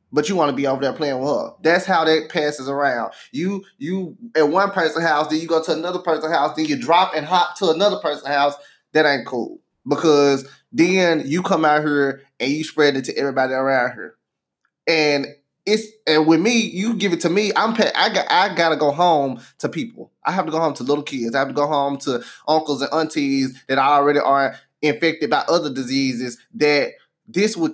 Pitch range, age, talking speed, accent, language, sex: 140-175 Hz, 20-39, 220 wpm, American, English, male